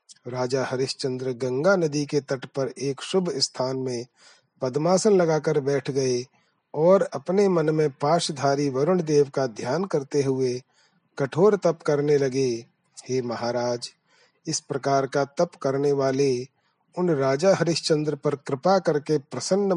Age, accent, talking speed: 40-59, native, 135 wpm